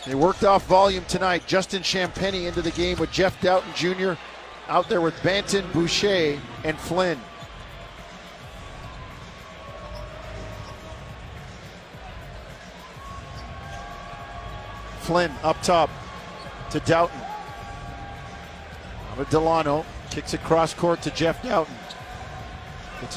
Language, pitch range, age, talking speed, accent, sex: English, 150-175 Hz, 50-69, 95 wpm, American, male